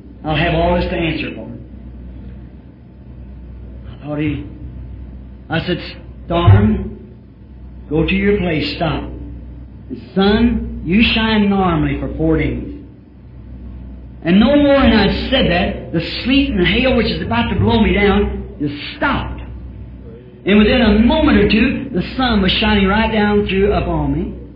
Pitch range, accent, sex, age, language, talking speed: 145-220 Hz, American, male, 50-69, English, 150 wpm